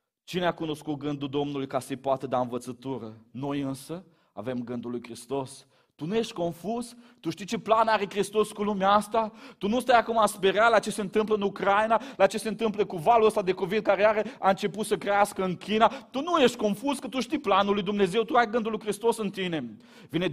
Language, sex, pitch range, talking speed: Romanian, male, 170-215 Hz, 220 wpm